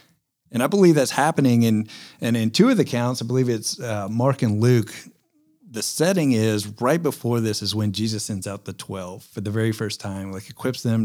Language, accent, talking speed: English, American, 215 wpm